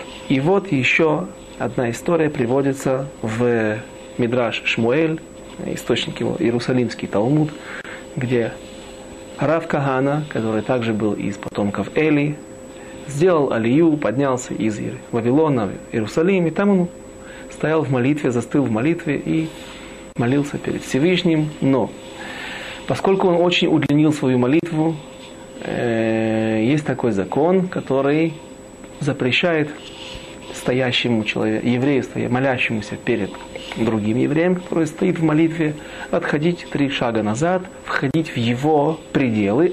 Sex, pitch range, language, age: male, 110-160 Hz, Russian, 30-49